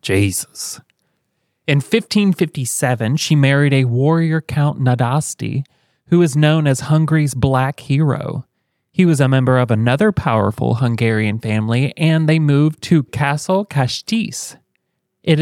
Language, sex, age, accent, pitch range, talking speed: English, male, 30-49, American, 130-165 Hz, 125 wpm